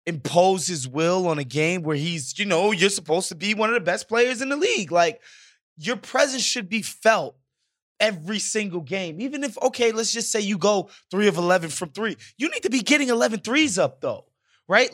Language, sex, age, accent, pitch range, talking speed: English, male, 20-39, American, 155-215 Hz, 215 wpm